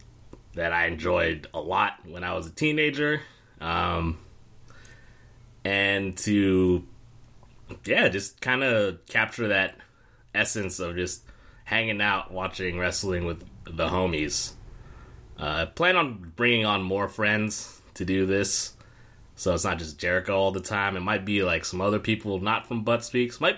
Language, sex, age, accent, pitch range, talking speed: English, male, 30-49, American, 95-120 Hz, 155 wpm